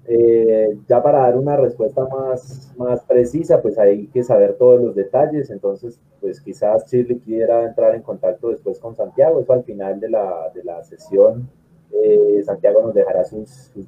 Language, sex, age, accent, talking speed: Spanish, male, 30-49, Colombian, 175 wpm